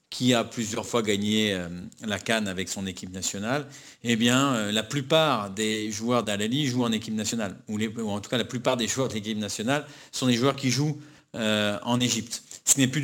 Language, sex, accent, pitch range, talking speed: French, male, French, 110-130 Hz, 210 wpm